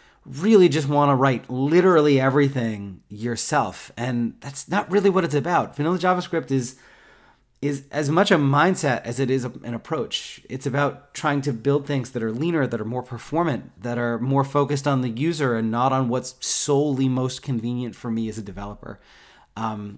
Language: English